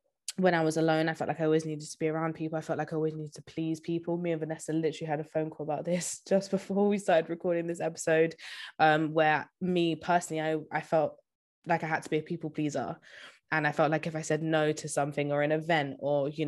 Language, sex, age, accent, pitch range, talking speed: English, female, 20-39, British, 150-170 Hz, 255 wpm